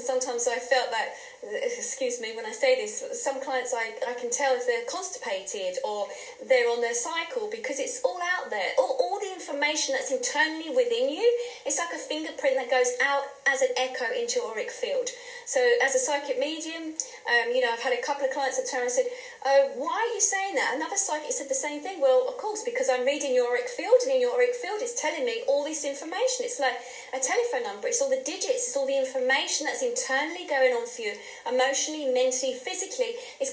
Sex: female